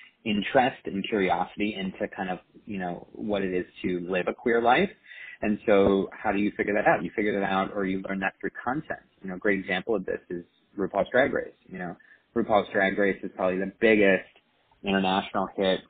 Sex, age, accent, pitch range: male, 30-49, American, 95-105 Hz